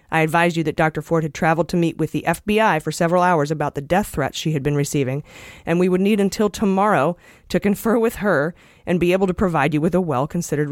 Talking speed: 240 wpm